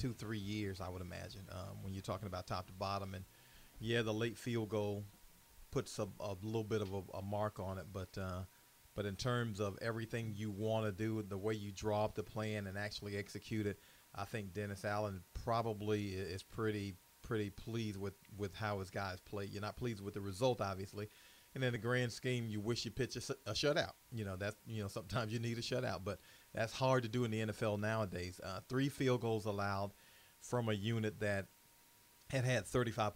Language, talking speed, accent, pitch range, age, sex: English, 215 wpm, American, 100-110 Hz, 40-59, male